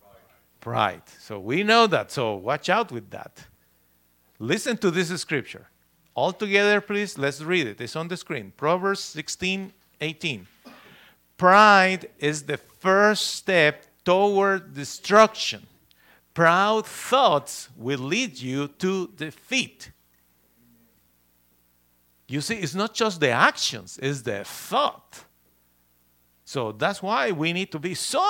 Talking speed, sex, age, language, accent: 125 wpm, male, 50-69, English, Mexican